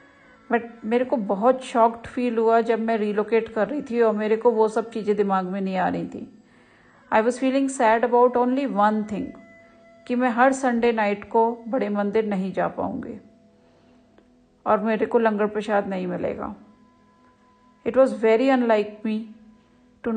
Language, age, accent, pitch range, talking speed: Hindi, 40-59, native, 210-245 Hz, 170 wpm